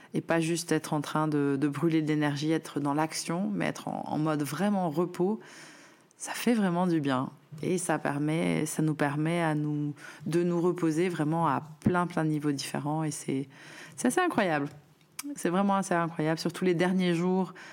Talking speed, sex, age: 195 wpm, female, 20-39